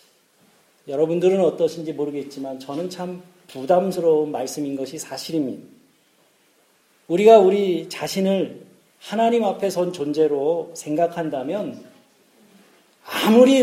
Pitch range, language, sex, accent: 165-215 Hz, Korean, male, native